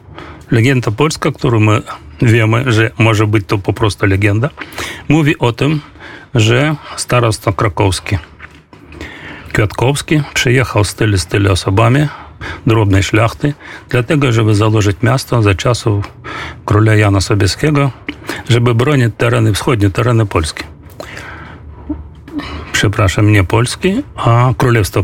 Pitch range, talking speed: 105-130 Hz, 115 wpm